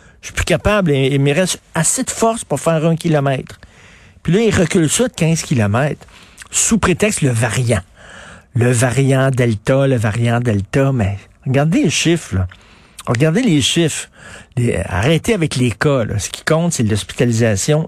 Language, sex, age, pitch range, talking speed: French, male, 50-69, 120-160 Hz, 170 wpm